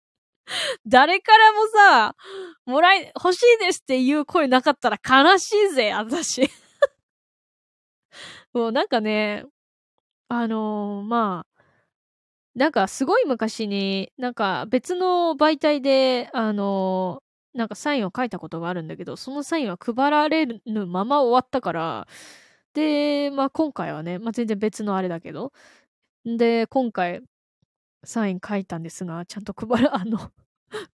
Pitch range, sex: 205-295 Hz, female